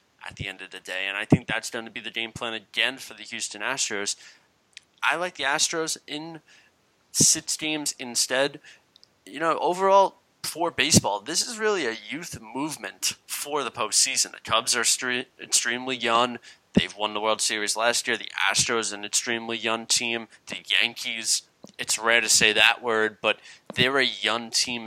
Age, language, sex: 20-39, English, male